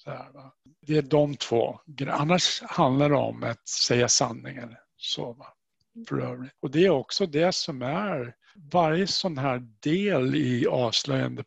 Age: 60-79